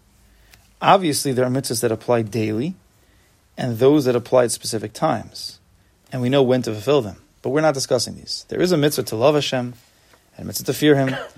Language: English